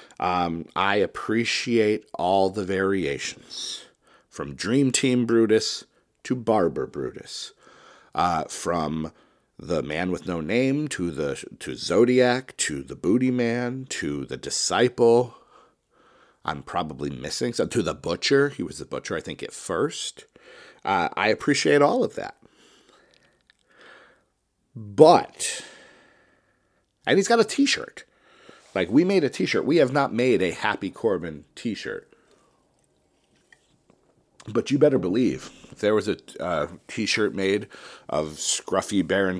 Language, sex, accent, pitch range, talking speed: English, male, American, 95-150 Hz, 130 wpm